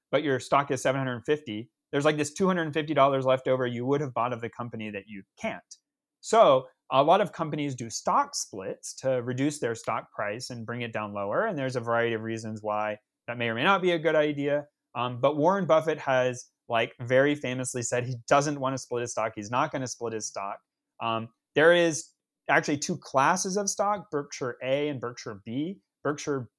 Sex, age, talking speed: male, 30-49, 210 wpm